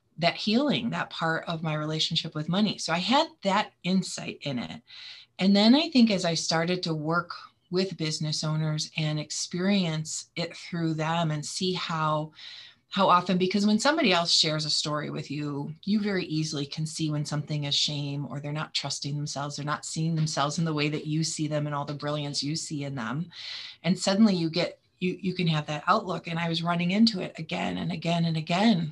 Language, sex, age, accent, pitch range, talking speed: English, female, 30-49, American, 155-185 Hz, 210 wpm